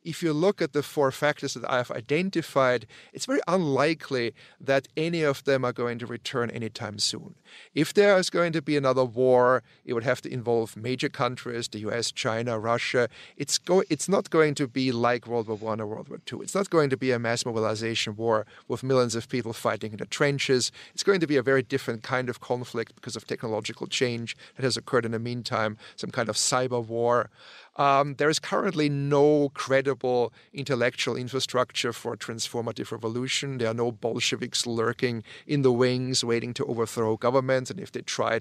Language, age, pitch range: English, 40-59, 115-145 Hz